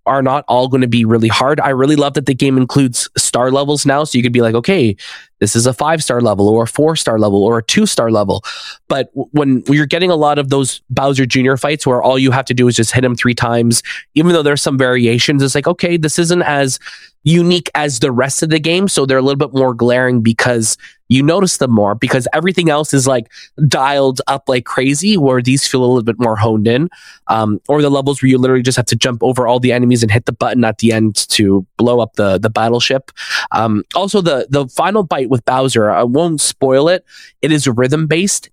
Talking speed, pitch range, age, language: 240 wpm, 120-145 Hz, 20-39, English